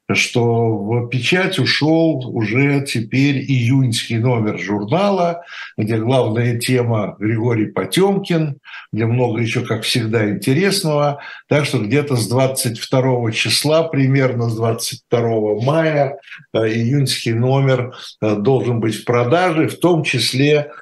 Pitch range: 120-150 Hz